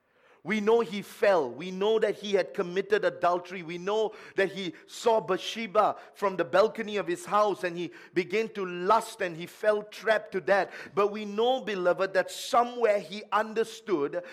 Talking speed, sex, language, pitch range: 175 wpm, male, English, 175-235 Hz